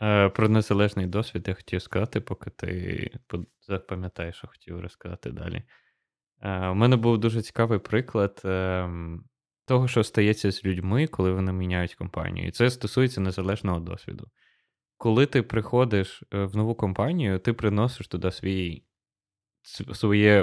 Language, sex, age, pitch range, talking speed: Ukrainian, male, 20-39, 95-115 Hz, 130 wpm